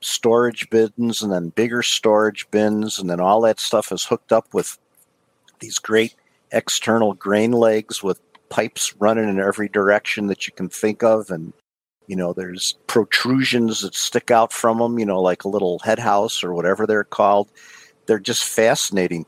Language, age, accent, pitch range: English, 50-69, American, 95-110 Hz